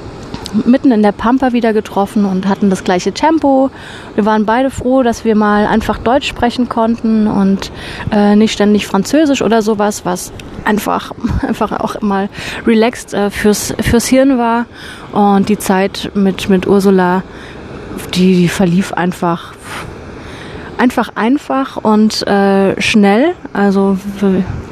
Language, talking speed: German, 135 wpm